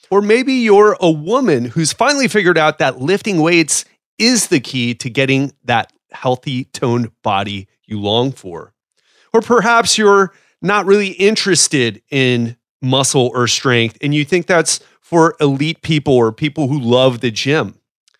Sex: male